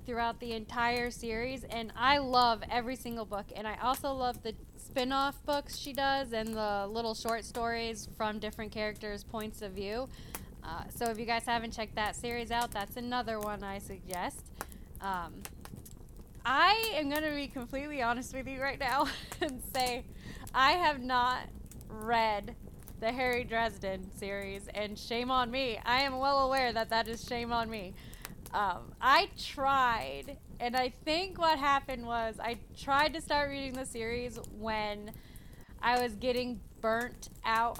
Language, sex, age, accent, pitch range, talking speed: English, female, 20-39, American, 225-275 Hz, 160 wpm